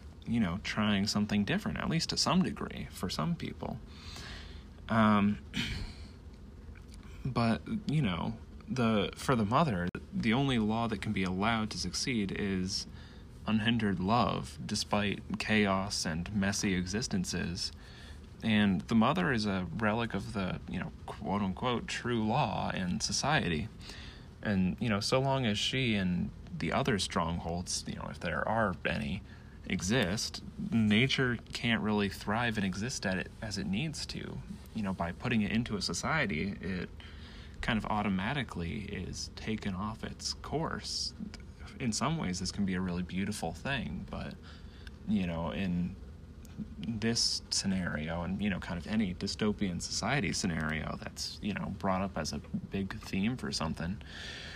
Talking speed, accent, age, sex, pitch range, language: 150 wpm, American, 30-49, male, 85-110 Hz, English